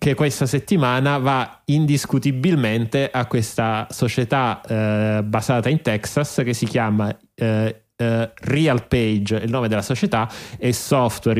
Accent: native